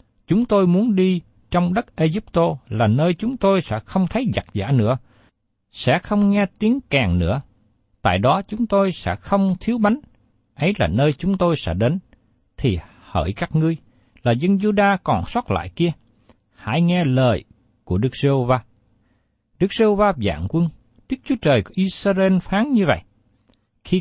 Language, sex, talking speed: Vietnamese, male, 170 wpm